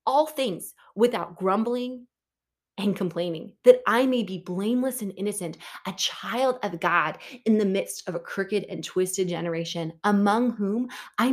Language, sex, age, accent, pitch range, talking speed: English, female, 20-39, American, 190-250 Hz, 155 wpm